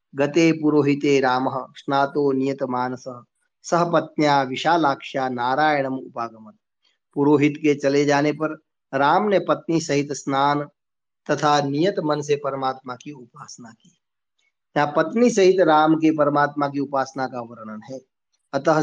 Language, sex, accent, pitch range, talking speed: Hindi, male, native, 135-155 Hz, 130 wpm